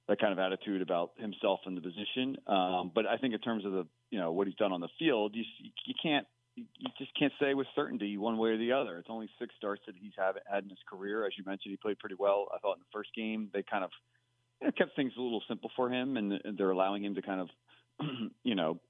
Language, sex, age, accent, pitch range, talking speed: English, male, 40-59, American, 95-125 Hz, 265 wpm